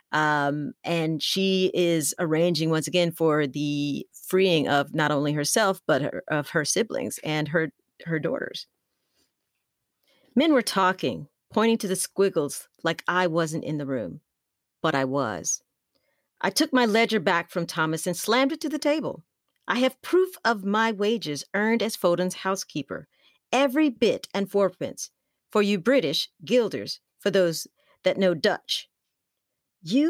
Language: English